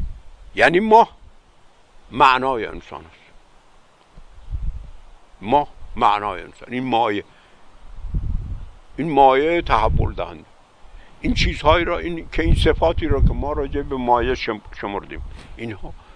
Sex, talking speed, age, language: male, 110 wpm, 60-79, Persian